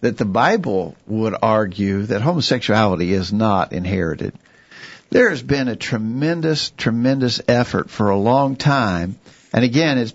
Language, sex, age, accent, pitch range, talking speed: English, male, 50-69, American, 110-130 Hz, 140 wpm